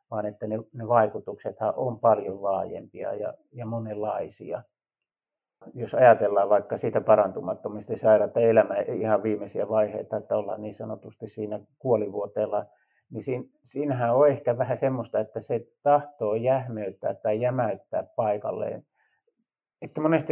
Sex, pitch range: male, 110-155 Hz